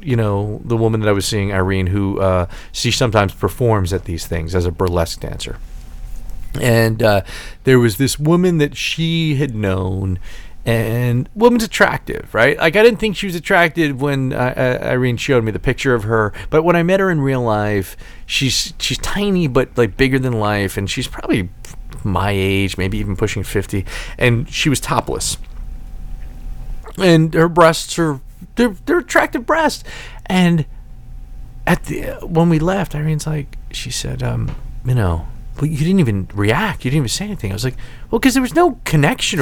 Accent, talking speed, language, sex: American, 185 wpm, English, male